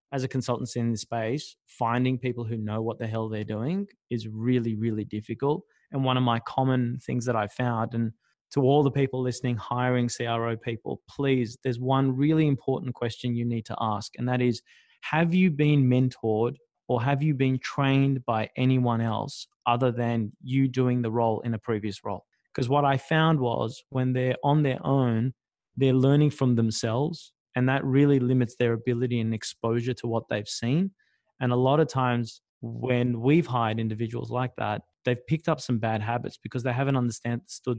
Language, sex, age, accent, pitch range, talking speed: English, male, 20-39, Australian, 115-135 Hz, 190 wpm